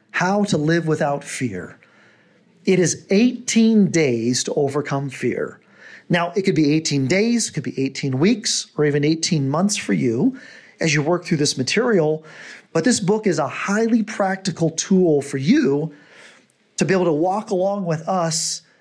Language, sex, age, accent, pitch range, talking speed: English, male, 40-59, American, 145-200 Hz, 170 wpm